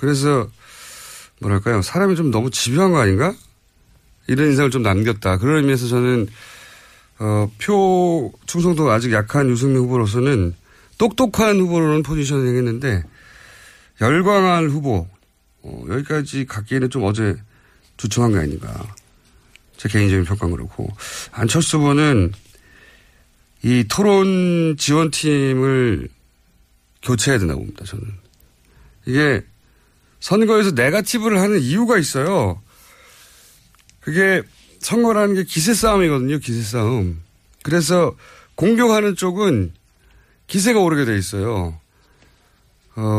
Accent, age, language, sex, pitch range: native, 40-59, Korean, male, 105-175 Hz